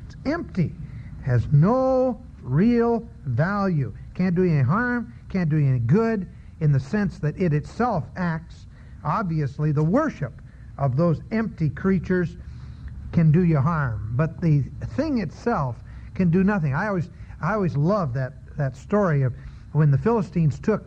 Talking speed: 150 wpm